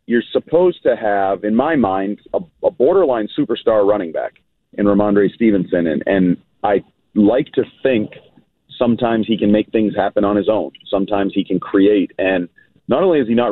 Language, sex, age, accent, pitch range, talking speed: English, male, 40-59, American, 100-130 Hz, 180 wpm